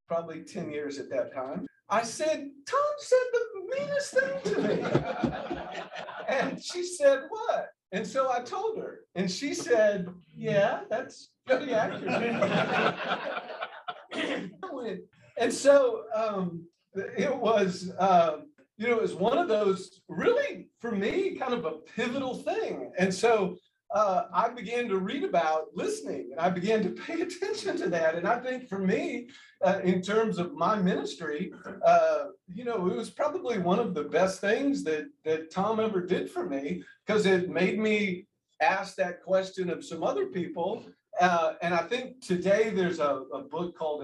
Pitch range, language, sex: 170-270 Hz, English, male